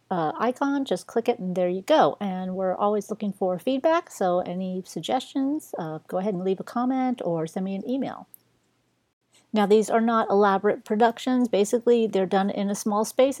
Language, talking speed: English, 195 wpm